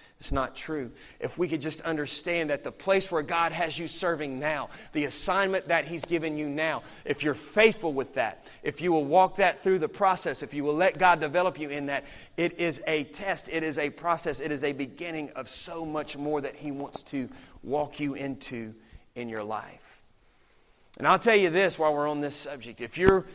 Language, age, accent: English, 30-49, American